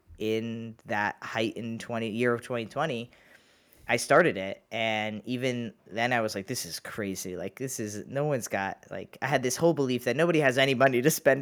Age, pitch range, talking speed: 20-39, 110-140 Hz, 200 wpm